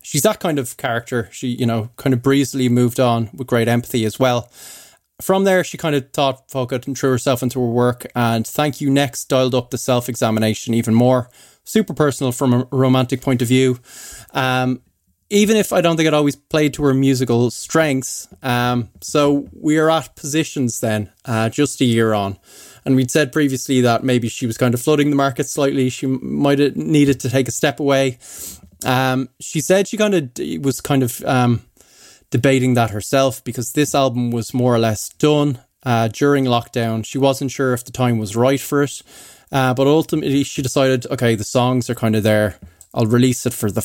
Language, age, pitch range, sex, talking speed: English, 20-39, 120-140 Hz, male, 205 wpm